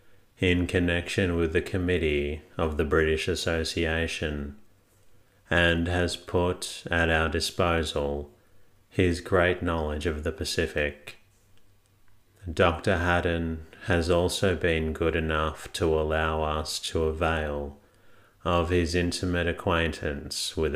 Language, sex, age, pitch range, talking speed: English, male, 30-49, 80-95 Hz, 110 wpm